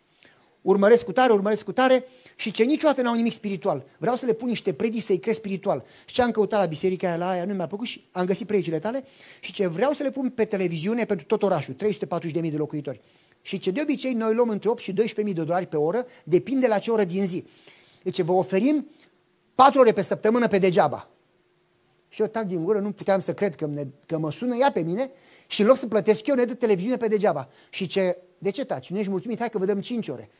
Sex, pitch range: male, 175-230 Hz